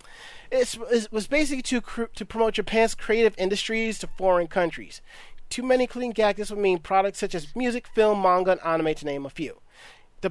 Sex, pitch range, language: male, 175-225 Hz, English